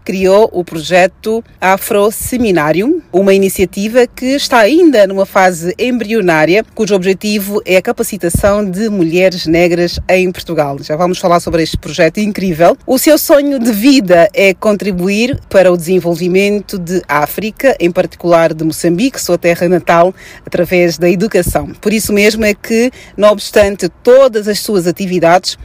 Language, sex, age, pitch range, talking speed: Portuguese, female, 40-59, 175-220 Hz, 145 wpm